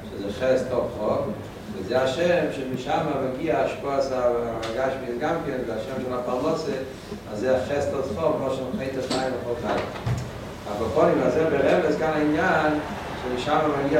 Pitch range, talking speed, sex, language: 100-140 Hz, 150 wpm, male, Hebrew